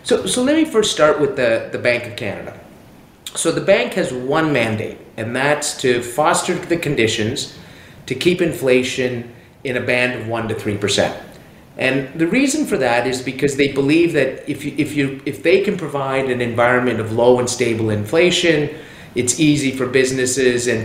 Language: English